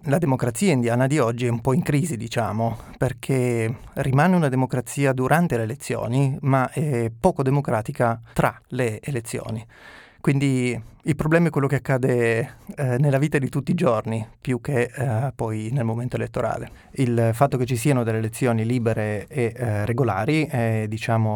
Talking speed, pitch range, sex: 165 wpm, 115-135 Hz, male